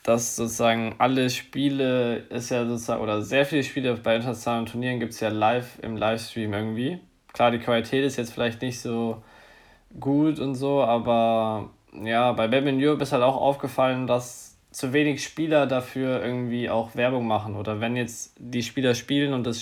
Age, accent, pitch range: 20-39, German, 115-130 Hz